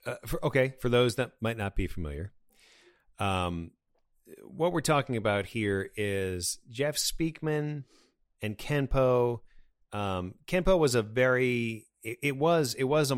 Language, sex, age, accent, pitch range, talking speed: English, male, 40-59, American, 95-120 Hz, 145 wpm